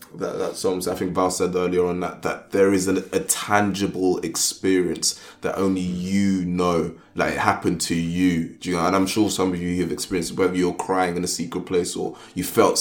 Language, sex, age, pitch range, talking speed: English, male, 20-39, 85-95 Hz, 215 wpm